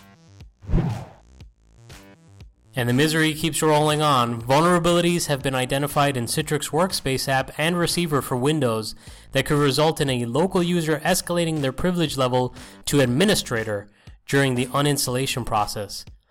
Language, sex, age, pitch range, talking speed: English, male, 30-49, 120-155 Hz, 130 wpm